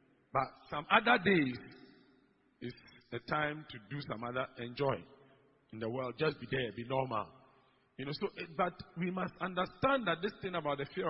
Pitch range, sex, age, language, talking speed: 140-205 Hz, male, 50-69, English, 180 wpm